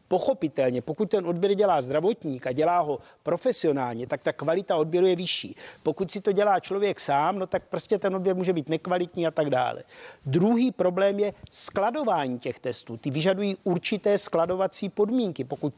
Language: Czech